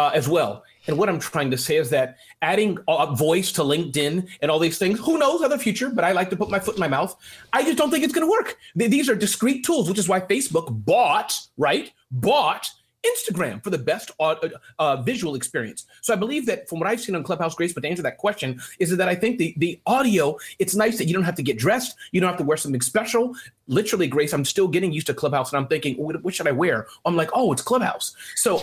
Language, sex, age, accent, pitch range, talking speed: English, male, 30-49, American, 160-235 Hz, 260 wpm